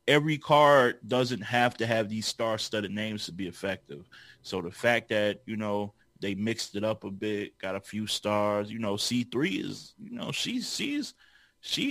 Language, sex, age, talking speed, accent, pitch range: English, male, 20-39, 185 wpm, American, 105-125 Hz